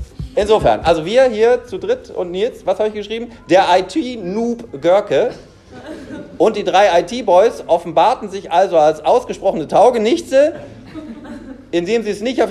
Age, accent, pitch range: 40-59, German, 160-220 Hz